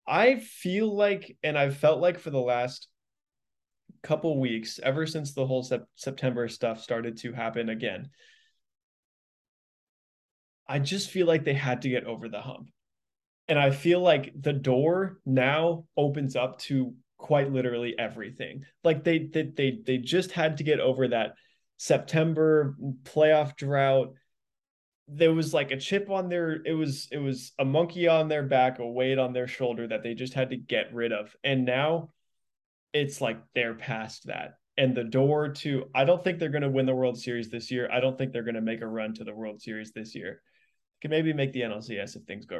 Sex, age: male, 20-39